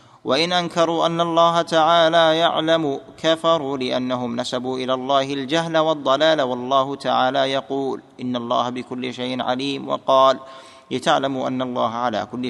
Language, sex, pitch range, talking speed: Arabic, male, 125-155 Hz, 130 wpm